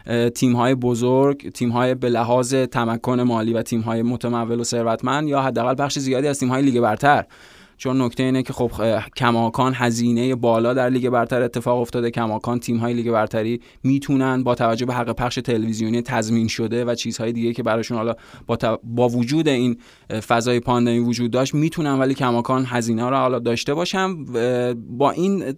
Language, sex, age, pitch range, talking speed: Persian, male, 20-39, 120-135 Hz, 185 wpm